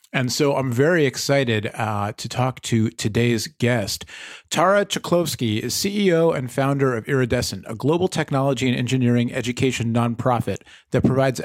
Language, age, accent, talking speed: English, 40-59, American, 145 wpm